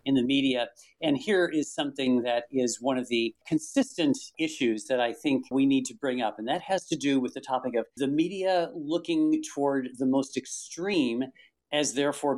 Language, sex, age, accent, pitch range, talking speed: English, male, 50-69, American, 130-170 Hz, 195 wpm